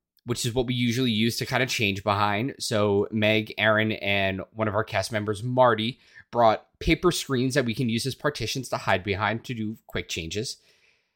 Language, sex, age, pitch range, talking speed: English, male, 20-39, 105-145 Hz, 200 wpm